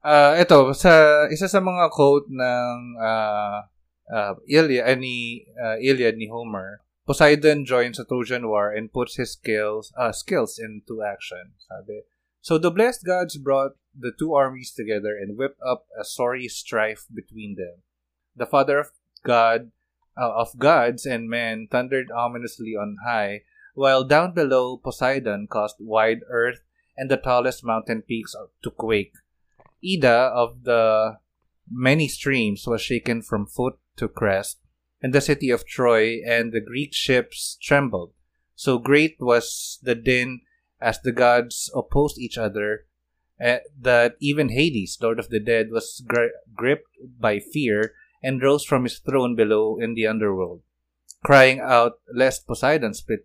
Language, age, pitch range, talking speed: Filipino, 20-39, 110-135 Hz, 150 wpm